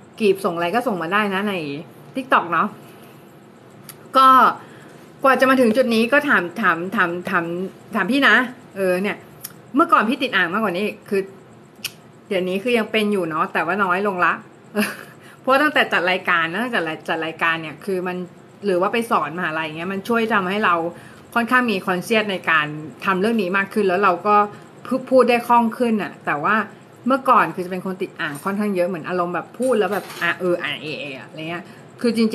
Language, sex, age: Thai, female, 30-49